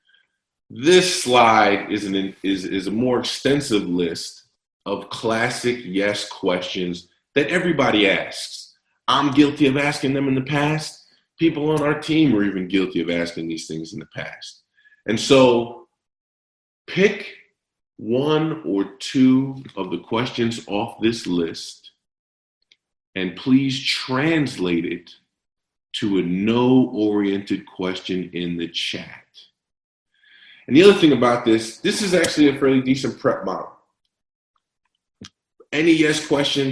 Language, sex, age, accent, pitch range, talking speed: English, male, 40-59, American, 95-135 Hz, 130 wpm